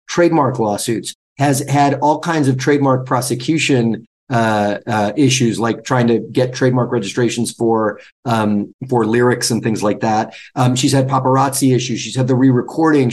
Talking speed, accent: 160 wpm, American